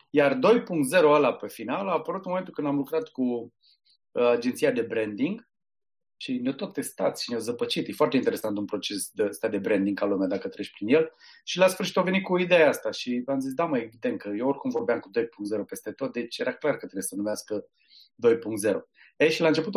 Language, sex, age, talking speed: Romanian, male, 30-49, 220 wpm